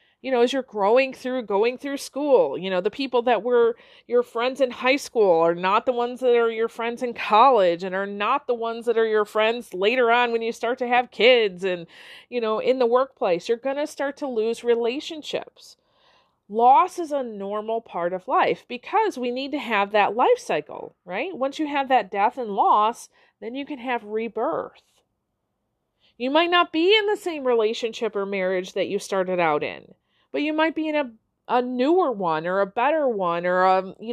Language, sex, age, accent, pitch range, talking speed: English, female, 40-59, American, 215-295 Hz, 205 wpm